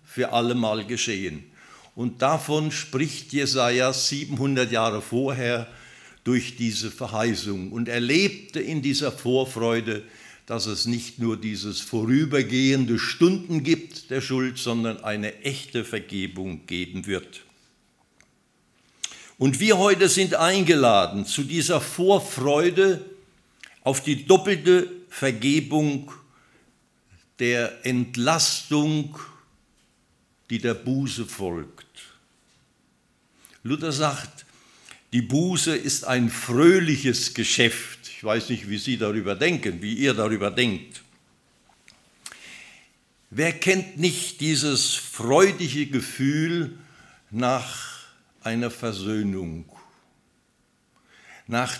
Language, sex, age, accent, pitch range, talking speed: German, male, 60-79, German, 115-150 Hz, 95 wpm